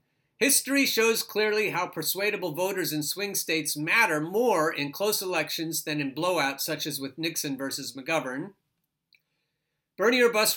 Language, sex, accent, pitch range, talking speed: English, male, American, 155-215 Hz, 150 wpm